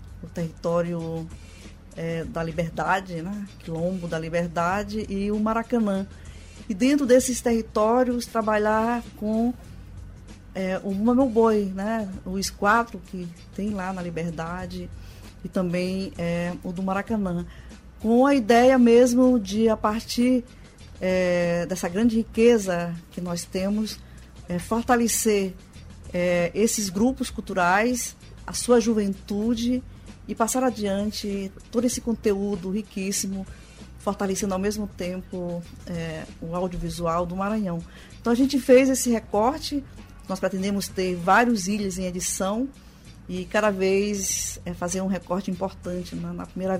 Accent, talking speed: Brazilian, 125 wpm